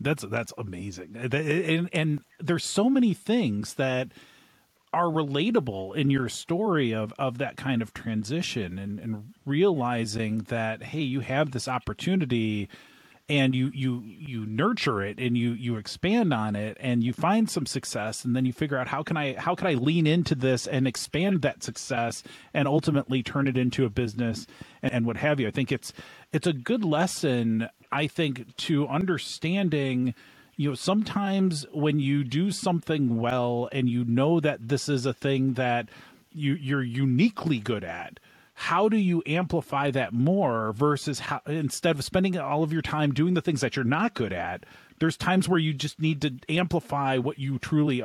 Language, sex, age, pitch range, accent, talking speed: English, male, 40-59, 125-165 Hz, American, 180 wpm